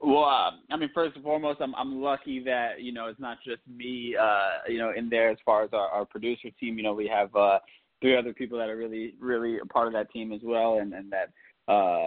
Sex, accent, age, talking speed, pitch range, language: male, American, 20-39, 260 wpm, 110-130 Hz, English